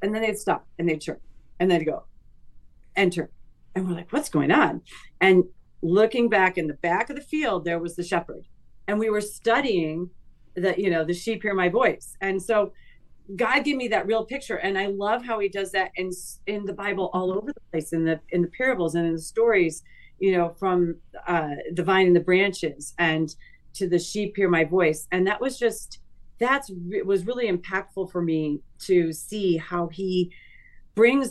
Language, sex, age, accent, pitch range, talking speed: English, female, 40-59, American, 160-195 Hz, 205 wpm